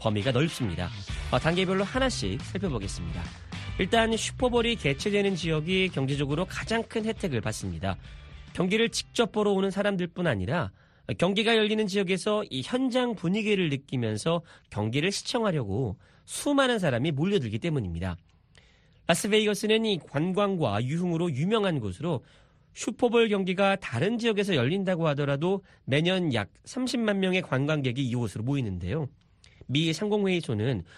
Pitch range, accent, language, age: 135-205 Hz, native, Korean, 40-59